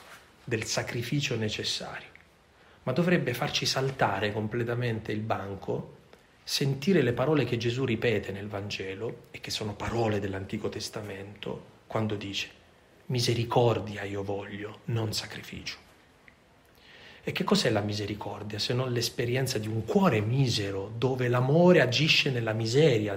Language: Italian